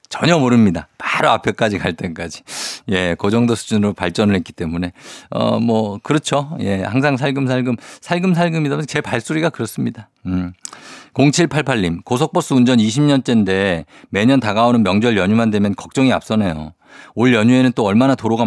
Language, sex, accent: Korean, male, native